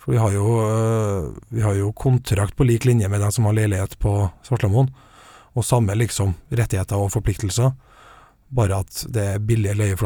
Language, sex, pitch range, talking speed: English, male, 100-115 Hz, 185 wpm